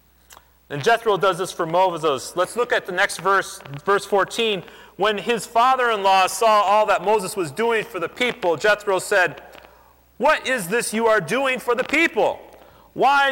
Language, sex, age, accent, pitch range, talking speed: English, male, 40-59, American, 180-260 Hz, 170 wpm